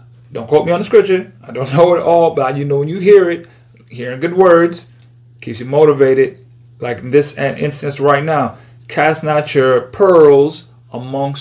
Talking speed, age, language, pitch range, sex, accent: 185 wpm, 30-49, English, 125-175 Hz, male, American